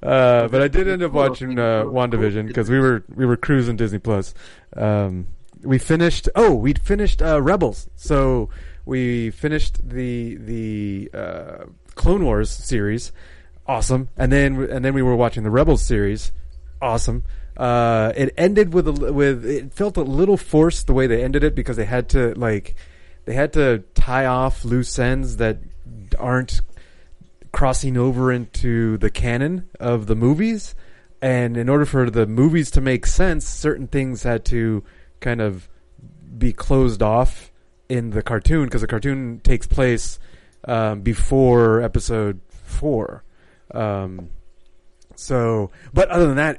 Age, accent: 30-49, American